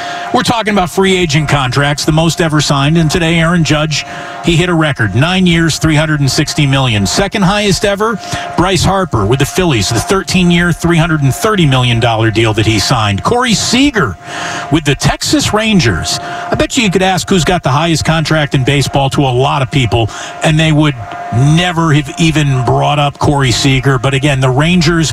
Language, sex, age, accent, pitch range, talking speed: English, male, 50-69, American, 145-185 Hz, 180 wpm